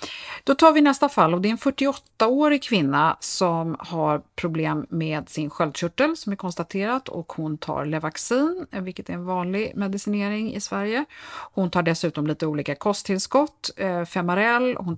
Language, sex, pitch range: Swedish, female, 160-210 Hz